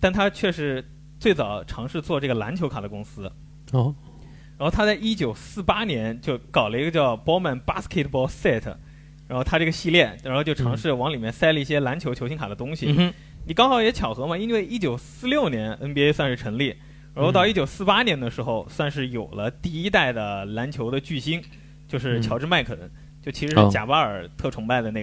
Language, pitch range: Chinese, 120-160 Hz